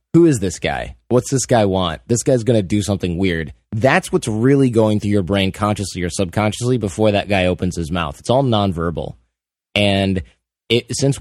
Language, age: English, 20-39